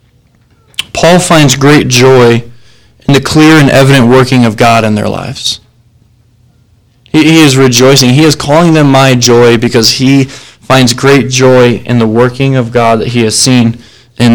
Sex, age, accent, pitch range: male, 20-39, American, 120-135 Hz